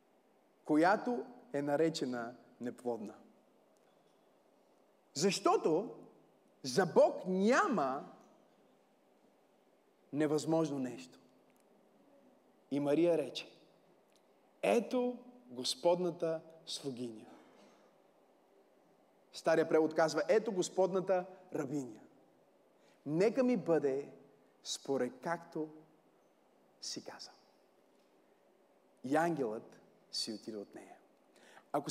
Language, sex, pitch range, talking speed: Bulgarian, male, 155-225 Hz, 70 wpm